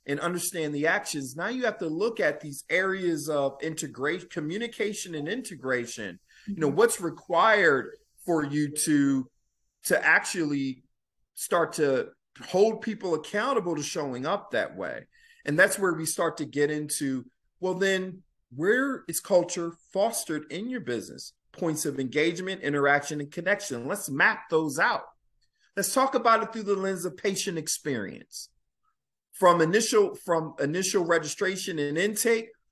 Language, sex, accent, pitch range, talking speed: English, male, American, 150-205 Hz, 145 wpm